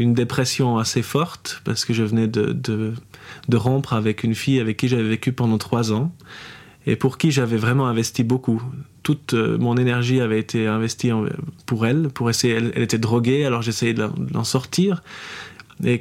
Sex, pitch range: male, 110-130 Hz